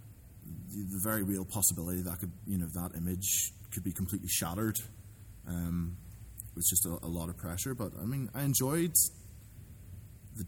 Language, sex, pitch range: English, male, 90-105 Hz